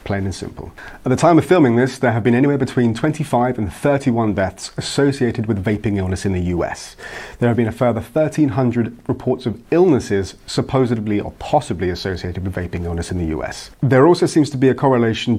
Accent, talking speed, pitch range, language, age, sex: British, 200 wpm, 110-135 Hz, English, 30-49, male